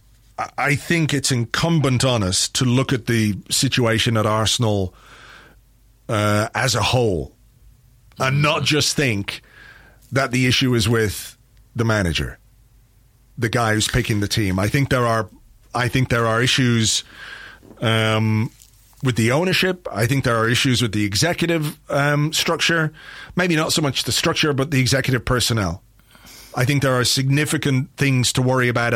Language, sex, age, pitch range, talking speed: English, male, 40-59, 115-145 Hz, 160 wpm